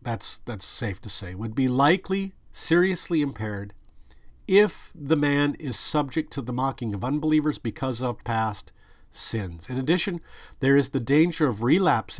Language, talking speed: English, 155 wpm